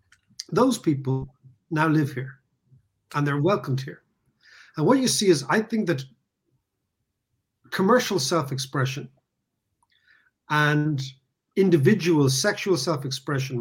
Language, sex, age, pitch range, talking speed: English, male, 50-69, 135-190 Hz, 100 wpm